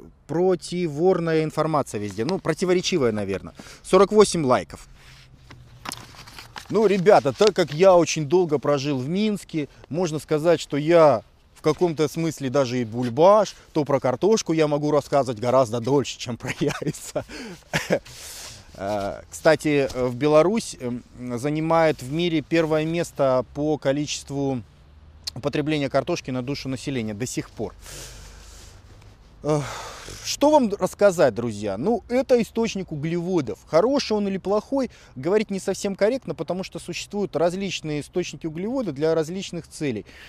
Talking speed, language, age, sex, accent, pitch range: 120 wpm, Russian, 30-49, male, native, 130-180 Hz